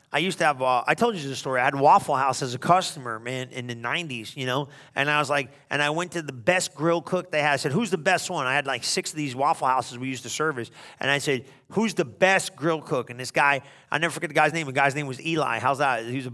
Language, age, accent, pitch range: English, 40-59, American, 145-190 Hz